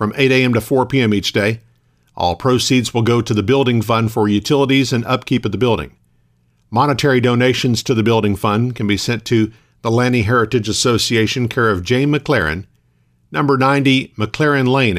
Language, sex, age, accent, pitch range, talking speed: English, male, 50-69, American, 110-135 Hz, 180 wpm